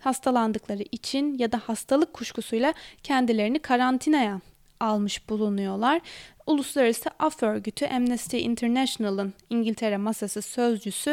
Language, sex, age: Turkish, female, 20-39